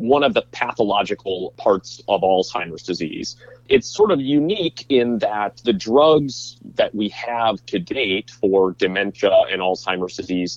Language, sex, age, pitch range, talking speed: English, male, 30-49, 95-120 Hz, 150 wpm